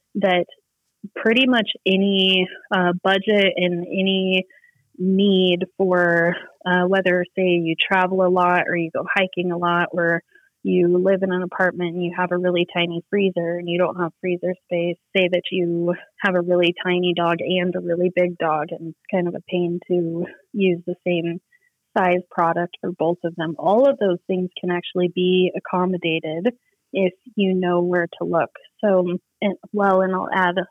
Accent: American